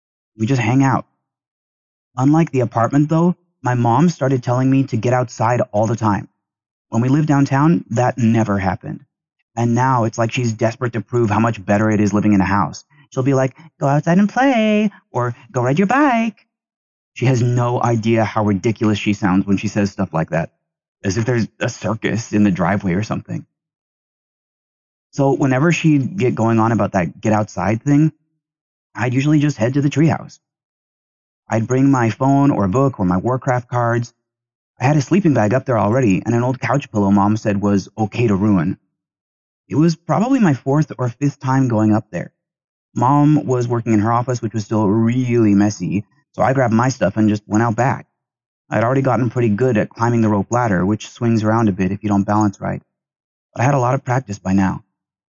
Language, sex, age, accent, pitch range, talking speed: English, male, 30-49, American, 105-135 Hz, 205 wpm